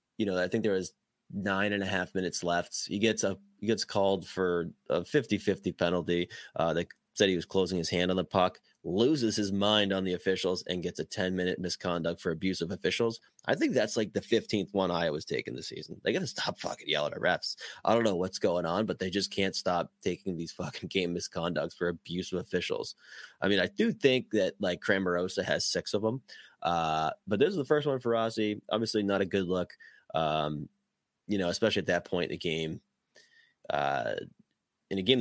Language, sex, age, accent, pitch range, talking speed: English, male, 20-39, American, 90-110 Hz, 215 wpm